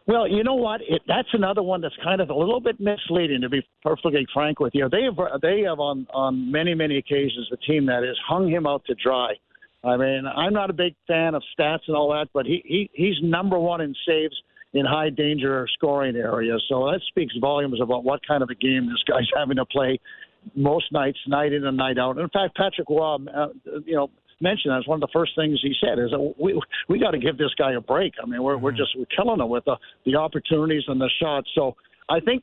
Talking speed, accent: 240 wpm, American